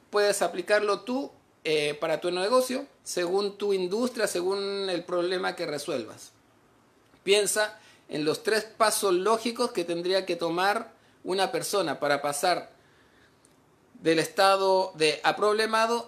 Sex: male